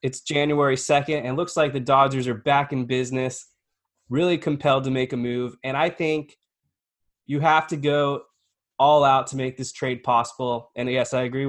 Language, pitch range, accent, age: English, 115-135 Hz, American, 20-39